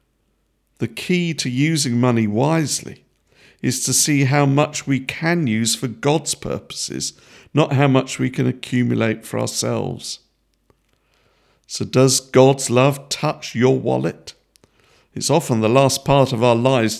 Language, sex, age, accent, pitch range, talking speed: English, male, 50-69, British, 120-145 Hz, 140 wpm